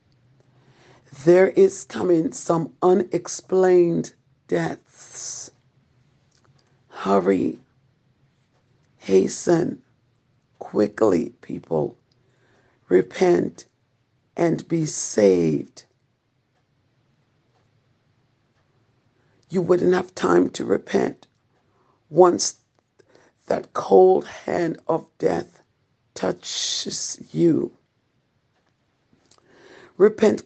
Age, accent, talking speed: 60-79, American, 55 wpm